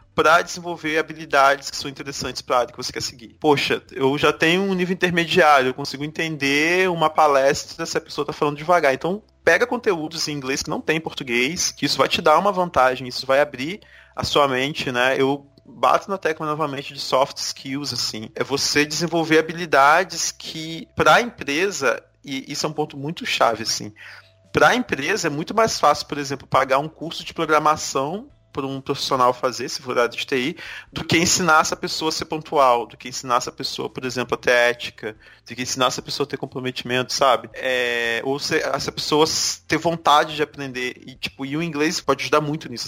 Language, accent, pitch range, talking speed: Portuguese, Brazilian, 135-165 Hz, 205 wpm